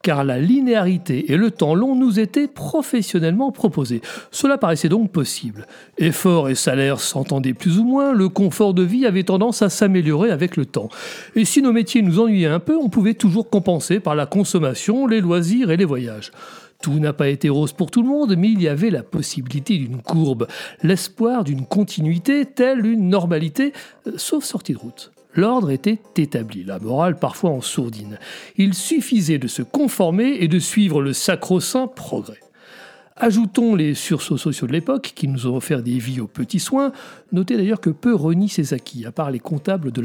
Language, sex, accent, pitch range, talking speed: French, male, French, 150-225 Hz, 190 wpm